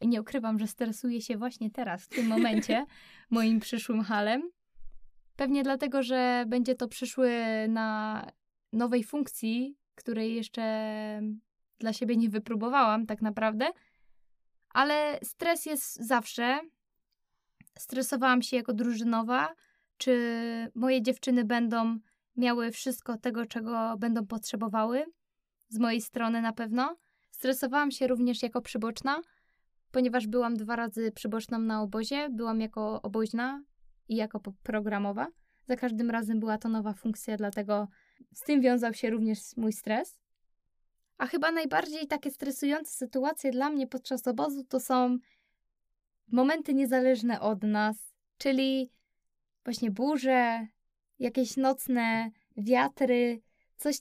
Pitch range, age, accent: 225-265 Hz, 10-29, native